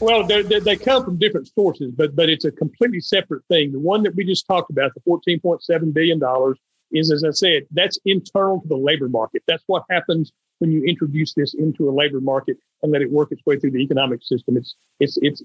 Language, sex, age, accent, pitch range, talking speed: English, male, 50-69, American, 145-175 Hz, 230 wpm